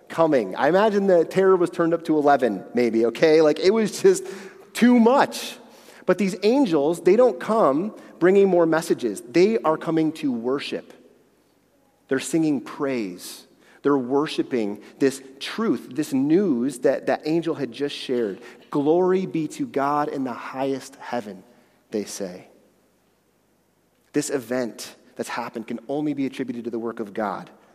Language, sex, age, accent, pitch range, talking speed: English, male, 30-49, American, 120-155 Hz, 150 wpm